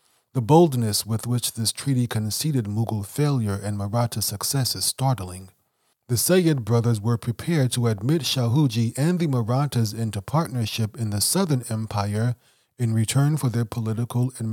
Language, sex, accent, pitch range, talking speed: English, male, American, 110-140 Hz, 155 wpm